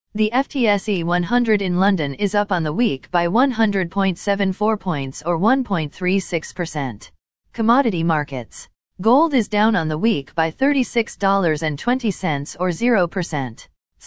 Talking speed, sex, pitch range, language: 115 wpm, female, 160-220 Hz, English